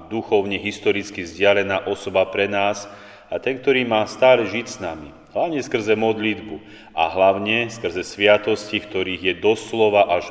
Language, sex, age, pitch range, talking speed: Slovak, male, 30-49, 90-105 Hz, 145 wpm